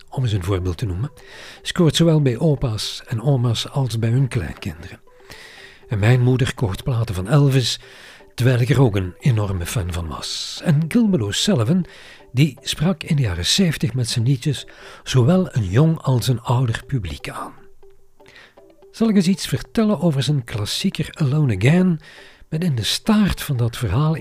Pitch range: 115-160 Hz